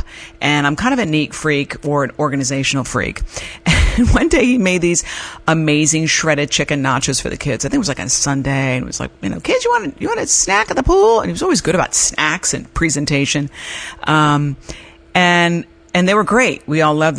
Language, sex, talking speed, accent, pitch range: English, female, 230 wpm, American, 140-195 Hz